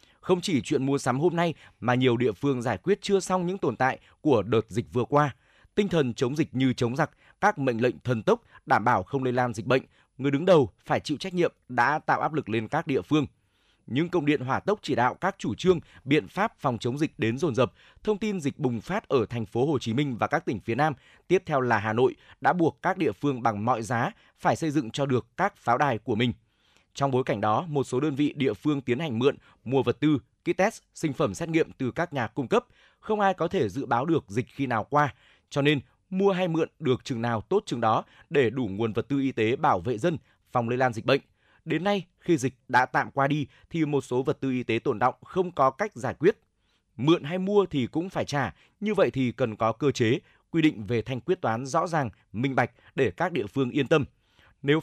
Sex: male